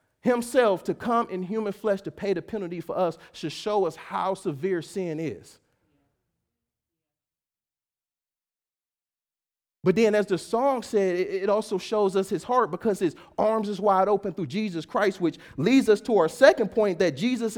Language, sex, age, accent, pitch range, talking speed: English, male, 40-59, American, 165-225 Hz, 165 wpm